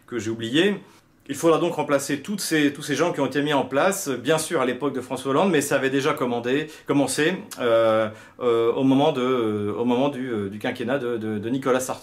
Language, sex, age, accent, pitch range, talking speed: French, male, 40-59, French, 125-150 Hz, 235 wpm